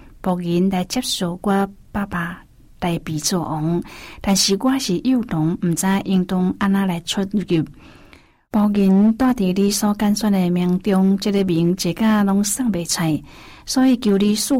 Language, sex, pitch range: Chinese, female, 175-205 Hz